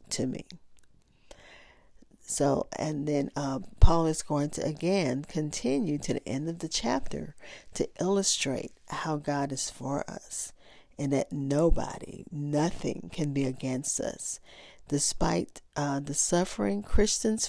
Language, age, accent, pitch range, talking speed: English, 40-59, American, 135-165 Hz, 130 wpm